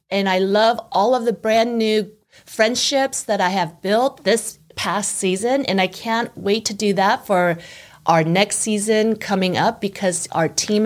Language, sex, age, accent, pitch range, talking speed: English, female, 30-49, American, 190-240 Hz, 175 wpm